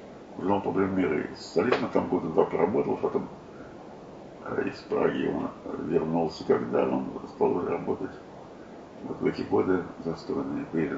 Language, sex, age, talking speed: Russian, male, 50-69, 125 wpm